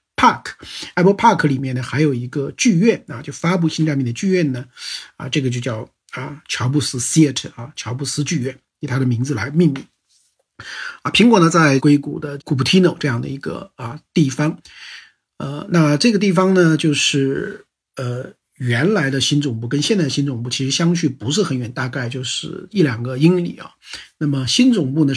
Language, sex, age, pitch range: Chinese, male, 50-69, 130-165 Hz